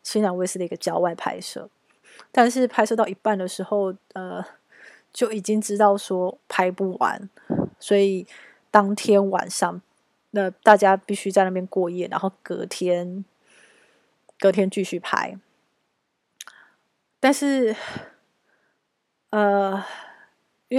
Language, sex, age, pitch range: Chinese, female, 20-39, 190-230 Hz